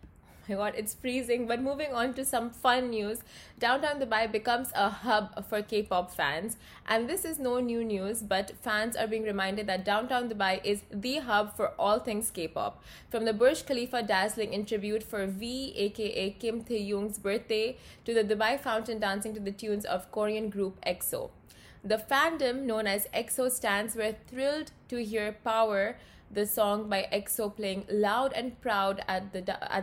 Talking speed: 165 wpm